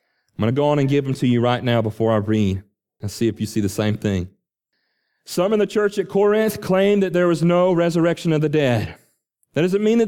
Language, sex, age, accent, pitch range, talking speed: English, male, 40-59, American, 130-205 Hz, 250 wpm